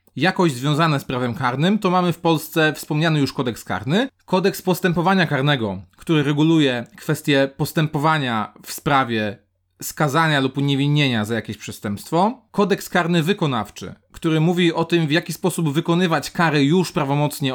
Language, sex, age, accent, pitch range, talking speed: Polish, male, 30-49, native, 140-180 Hz, 145 wpm